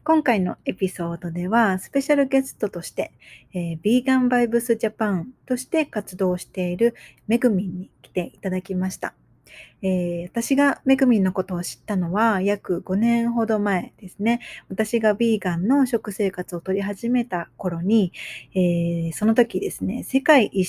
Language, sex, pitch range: Japanese, female, 185-230 Hz